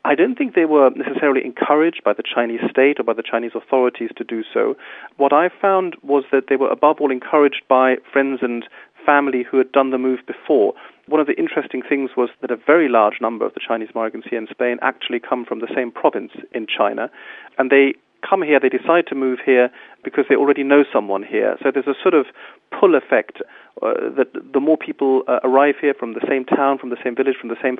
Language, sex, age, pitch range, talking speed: English, male, 40-59, 120-140 Hz, 230 wpm